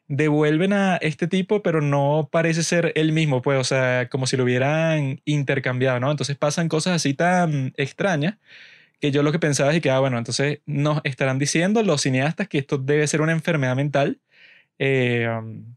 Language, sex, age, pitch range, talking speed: Spanish, male, 20-39, 140-170 Hz, 185 wpm